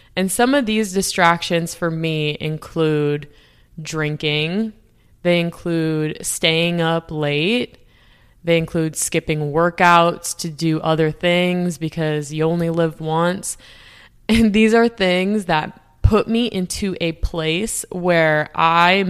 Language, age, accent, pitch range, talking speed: English, 20-39, American, 155-185 Hz, 125 wpm